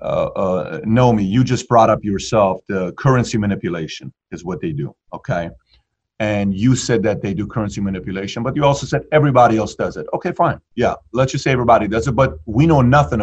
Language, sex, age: English, male, 40-59